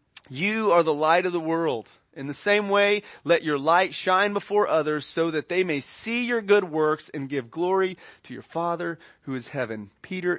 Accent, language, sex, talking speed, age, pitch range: American, English, male, 200 wpm, 30-49, 150-220 Hz